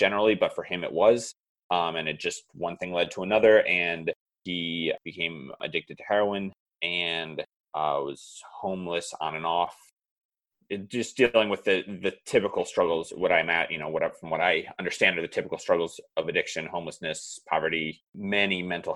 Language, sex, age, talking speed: English, male, 30-49, 175 wpm